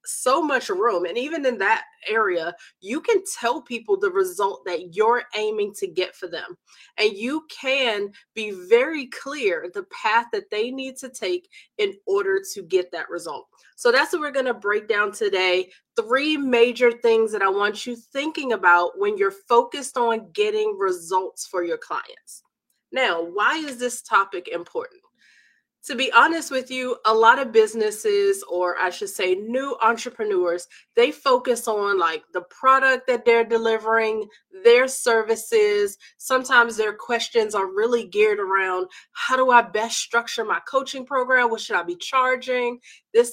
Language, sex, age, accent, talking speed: English, female, 20-39, American, 165 wpm